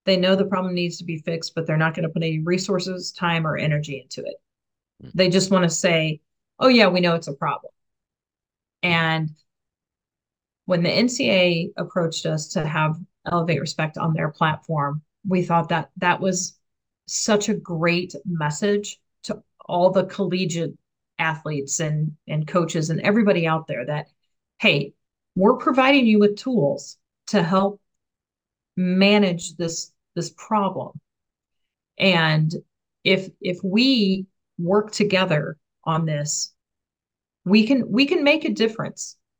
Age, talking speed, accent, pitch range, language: 40-59, 145 wpm, American, 160-195 Hz, English